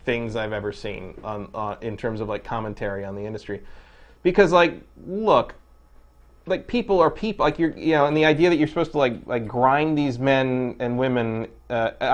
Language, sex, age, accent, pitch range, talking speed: English, male, 30-49, American, 110-150 Hz, 200 wpm